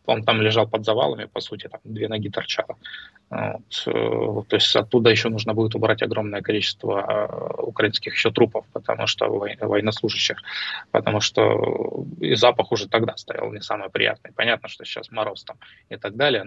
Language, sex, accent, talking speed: Russian, male, native, 155 wpm